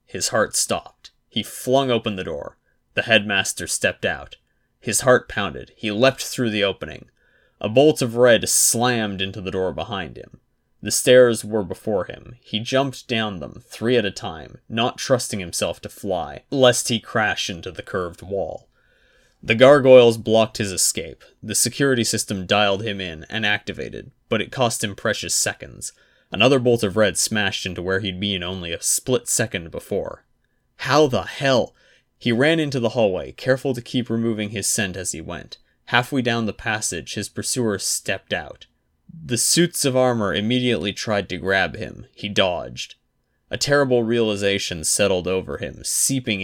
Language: English